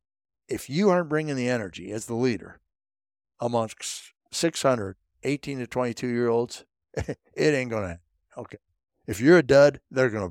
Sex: male